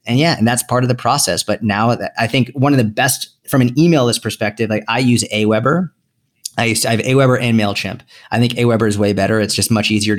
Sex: male